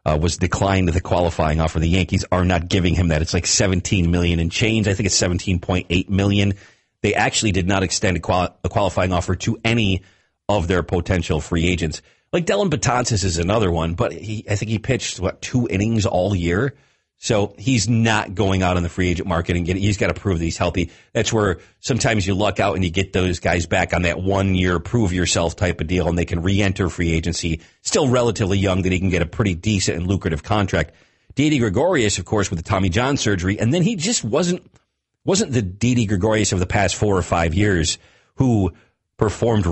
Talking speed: 220 wpm